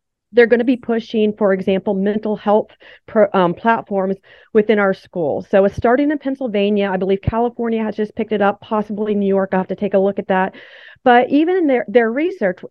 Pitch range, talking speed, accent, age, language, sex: 195-230 Hz, 210 wpm, American, 40-59, English, female